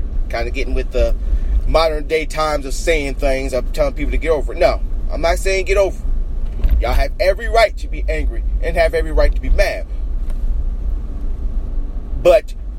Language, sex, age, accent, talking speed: English, male, 30-49, American, 190 wpm